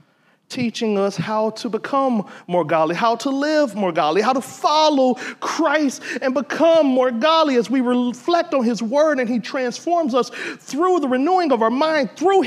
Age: 40-59